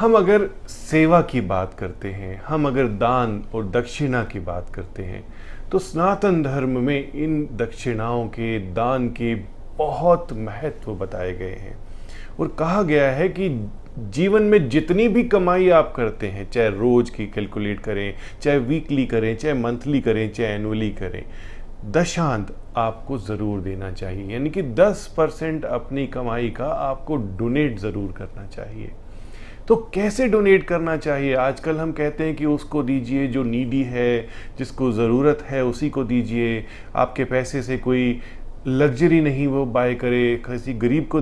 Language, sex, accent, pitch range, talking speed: Hindi, male, native, 110-150 Hz, 155 wpm